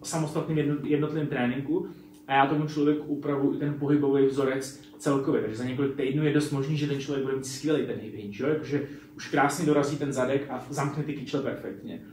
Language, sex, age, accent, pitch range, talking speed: Czech, male, 30-49, native, 140-160 Hz, 195 wpm